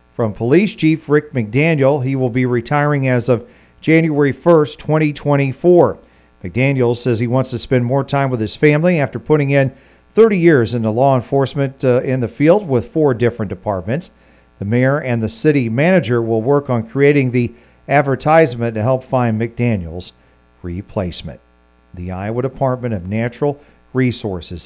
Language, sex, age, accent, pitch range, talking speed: English, male, 50-69, American, 115-145 Hz, 155 wpm